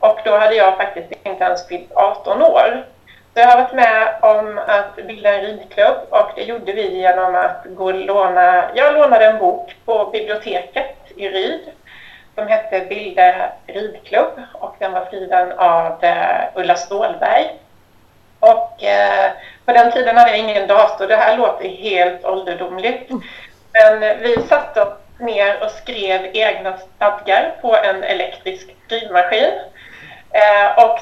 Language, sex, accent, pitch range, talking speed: Swedish, female, native, 185-240 Hz, 145 wpm